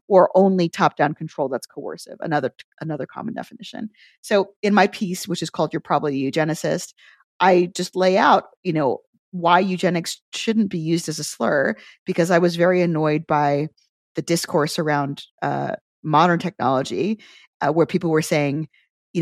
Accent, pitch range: American, 150-185 Hz